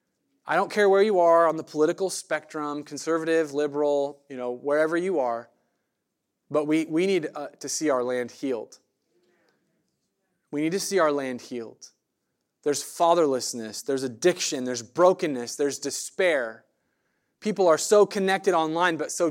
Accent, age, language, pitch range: American, 20-39, English, 145-180 Hz